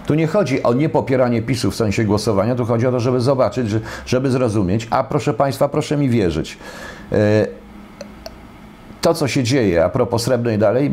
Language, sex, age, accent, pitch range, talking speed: Polish, male, 50-69, native, 95-120 Hz, 170 wpm